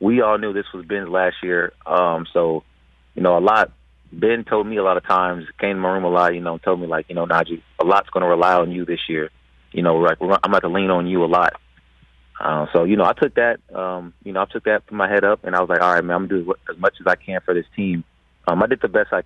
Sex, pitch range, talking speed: male, 85-100 Hz, 320 wpm